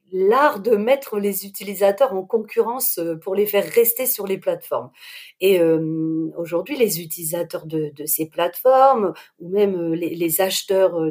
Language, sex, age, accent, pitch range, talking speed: French, female, 40-59, French, 175-230 Hz, 150 wpm